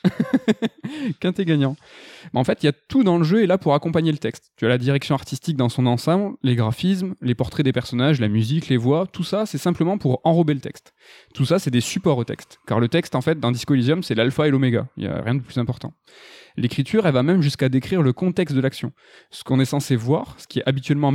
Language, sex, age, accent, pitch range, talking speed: French, male, 20-39, French, 125-165 Hz, 255 wpm